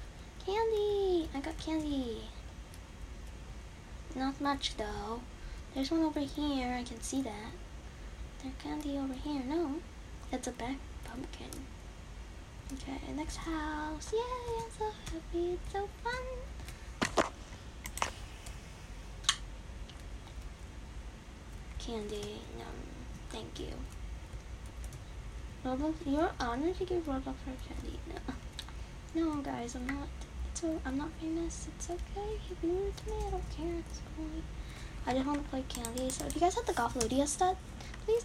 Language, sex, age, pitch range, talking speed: English, female, 10-29, 260-360 Hz, 130 wpm